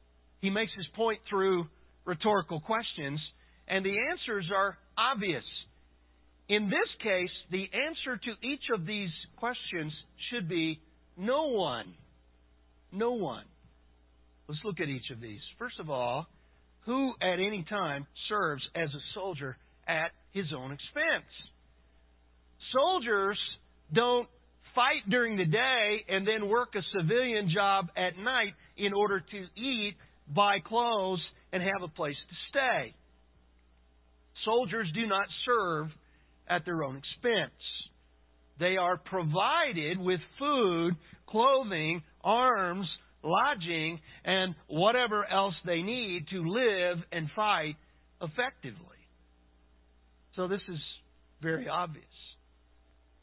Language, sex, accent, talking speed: English, male, American, 120 wpm